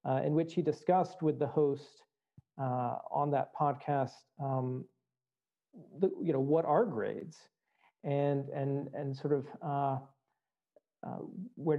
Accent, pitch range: American, 130-155 Hz